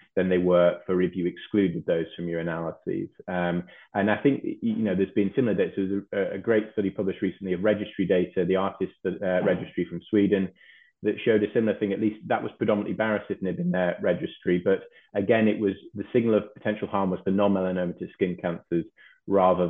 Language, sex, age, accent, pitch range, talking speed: English, male, 30-49, British, 90-100 Hz, 210 wpm